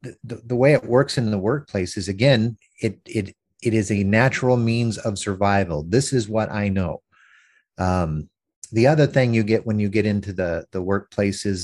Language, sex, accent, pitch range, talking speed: English, male, American, 95-125 Hz, 195 wpm